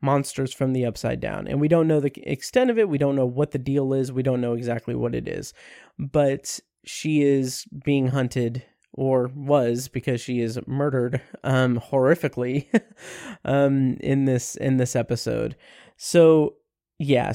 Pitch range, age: 125-145 Hz, 20-39